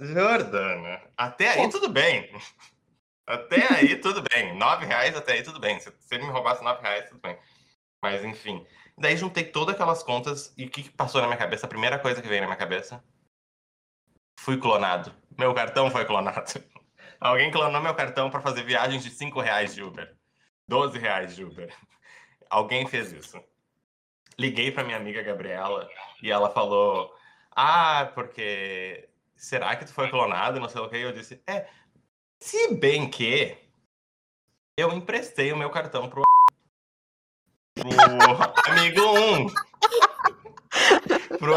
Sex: male